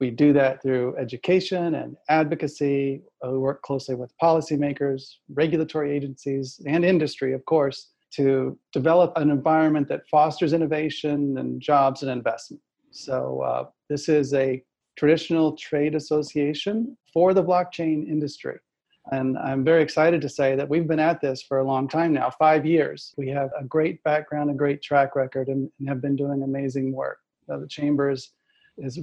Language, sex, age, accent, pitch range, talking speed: English, male, 40-59, American, 135-155 Hz, 160 wpm